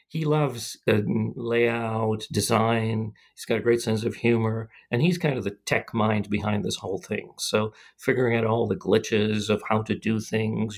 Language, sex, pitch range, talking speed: English, male, 110-135 Hz, 190 wpm